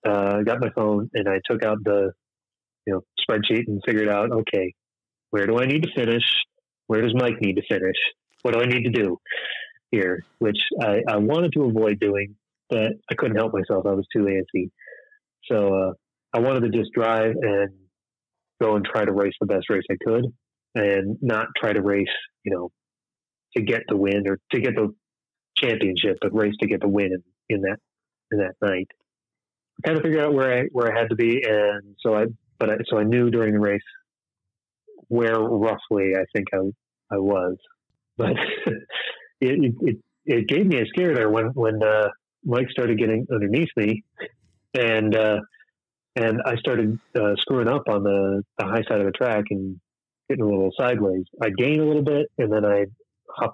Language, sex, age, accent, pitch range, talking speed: English, male, 30-49, American, 100-120 Hz, 195 wpm